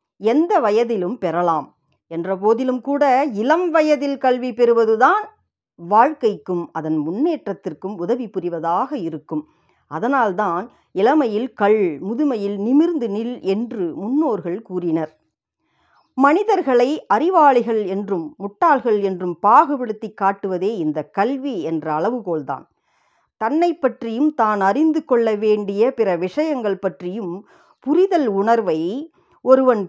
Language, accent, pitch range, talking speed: Tamil, native, 185-275 Hz, 95 wpm